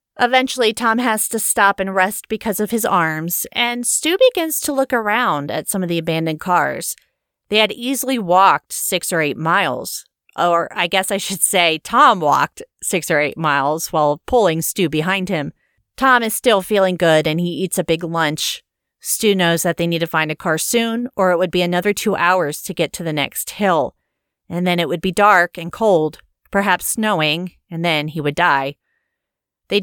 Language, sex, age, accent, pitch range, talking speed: English, female, 30-49, American, 165-220 Hz, 195 wpm